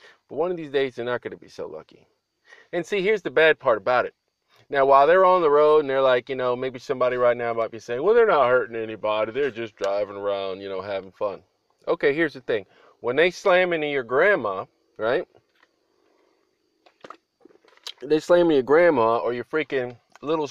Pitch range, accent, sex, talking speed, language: 125-200 Hz, American, male, 210 wpm, English